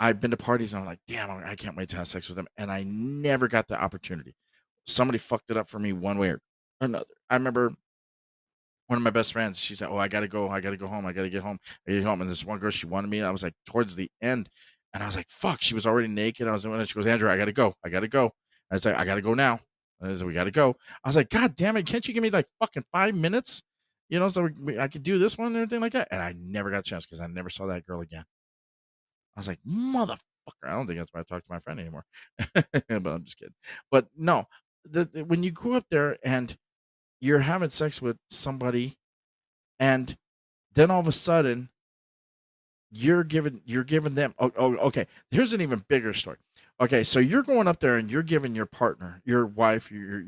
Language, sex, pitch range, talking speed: English, male, 95-145 Hz, 260 wpm